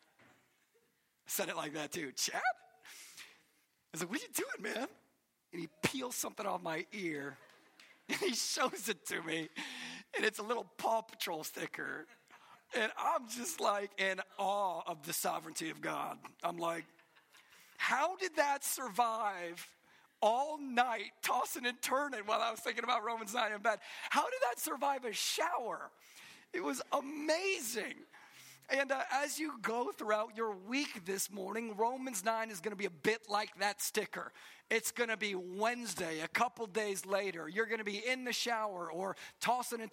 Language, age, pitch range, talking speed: English, 40-59, 195-245 Hz, 170 wpm